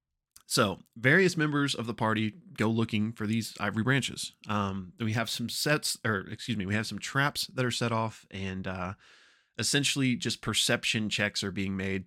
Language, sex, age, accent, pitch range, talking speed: English, male, 20-39, American, 105-125 Hz, 185 wpm